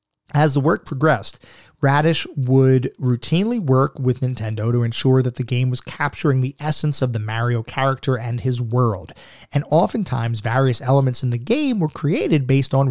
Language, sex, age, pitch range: English, male, 30-49, 125-150 Hz